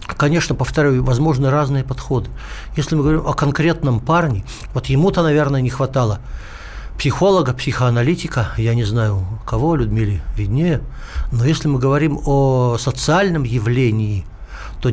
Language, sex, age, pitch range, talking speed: Russian, male, 60-79, 120-150 Hz, 130 wpm